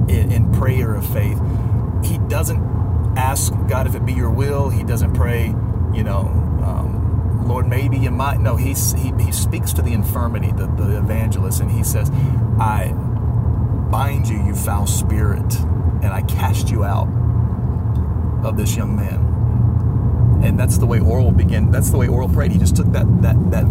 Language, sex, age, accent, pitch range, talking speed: English, male, 30-49, American, 100-110 Hz, 170 wpm